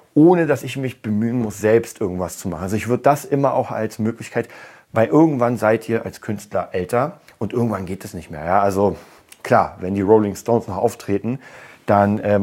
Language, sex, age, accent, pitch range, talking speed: German, male, 40-59, German, 100-115 Hz, 205 wpm